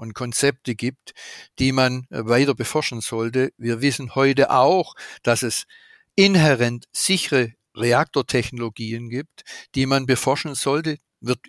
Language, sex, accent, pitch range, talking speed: German, male, German, 115-135 Hz, 120 wpm